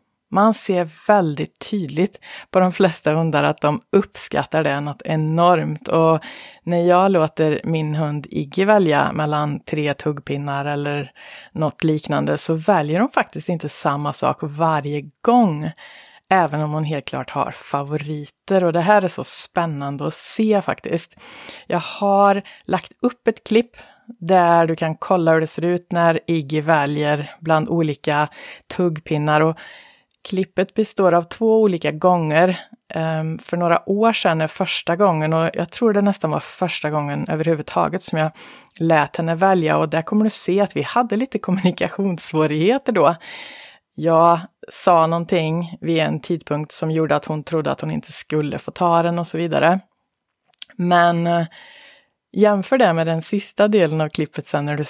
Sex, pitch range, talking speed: female, 155-190 Hz, 160 wpm